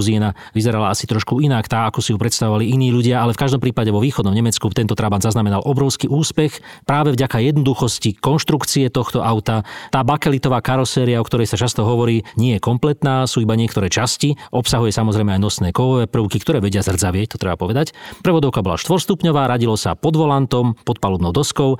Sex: male